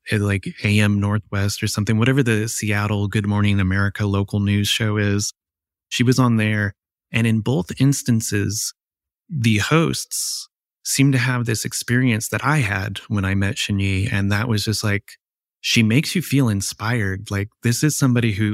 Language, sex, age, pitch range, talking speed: English, male, 20-39, 100-120 Hz, 170 wpm